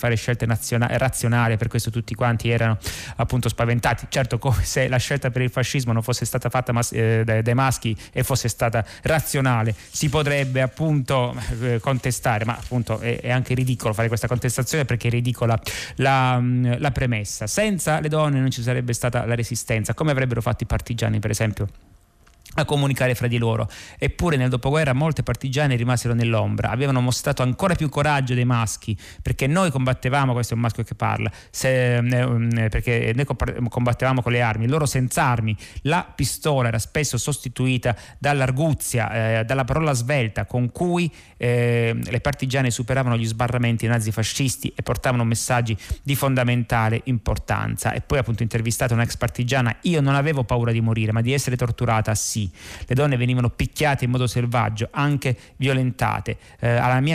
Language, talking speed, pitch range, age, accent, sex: Italian, 160 wpm, 115-130 Hz, 30-49, native, male